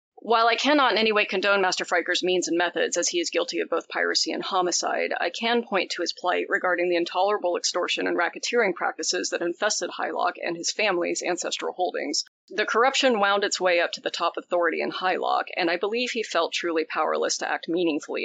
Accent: American